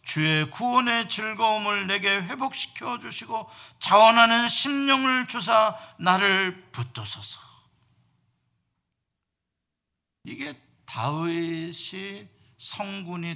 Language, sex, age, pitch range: Korean, male, 50-69, 130-200 Hz